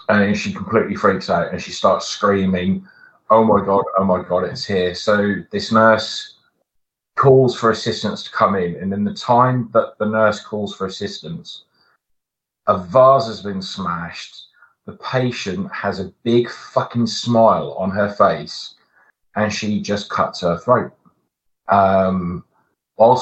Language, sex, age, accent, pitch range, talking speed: English, male, 30-49, British, 95-120 Hz, 150 wpm